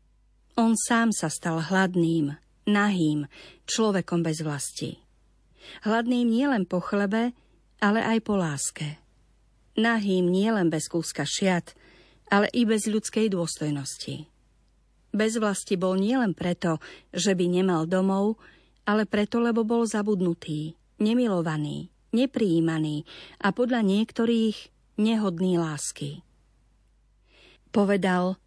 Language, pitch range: Slovak, 175-220 Hz